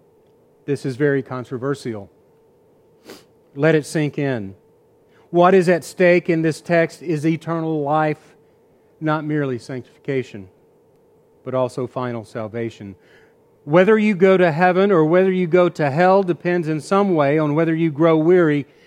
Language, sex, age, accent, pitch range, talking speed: English, male, 40-59, American, 150-185 Hz, 145 wpm